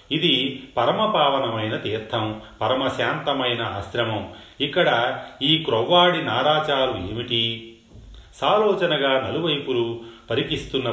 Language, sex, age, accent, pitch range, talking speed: Telugu, male, 40-59, native, 110-145 Hz, 70 wpm